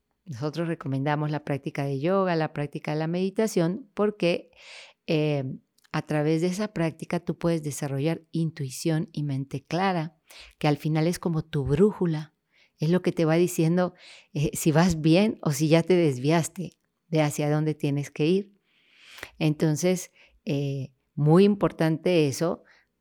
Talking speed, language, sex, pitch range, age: 150 wpm, Spanish, female, 150-185 Hz, 40-59